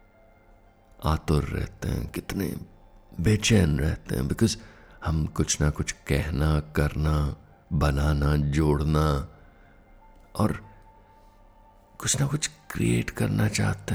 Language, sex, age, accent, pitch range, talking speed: Hindi, male, 60-79, native, 75-105 Hz, 100 wpm